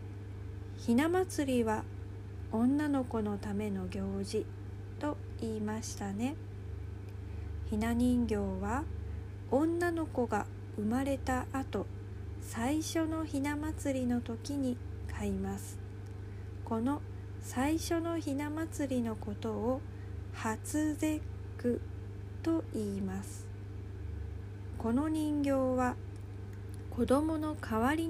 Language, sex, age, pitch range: Japanese, female, 40-59, 100-110 Hz